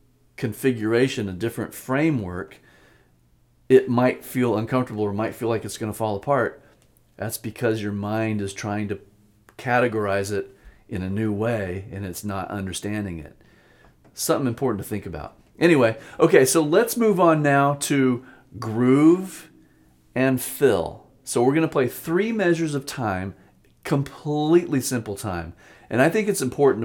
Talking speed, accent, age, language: 145 wpm, American, 40-59, English